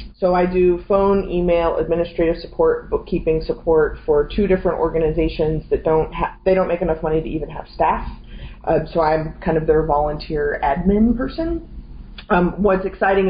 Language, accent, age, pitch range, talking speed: English, American, 20-39, 155-190 Hz, 165 wpm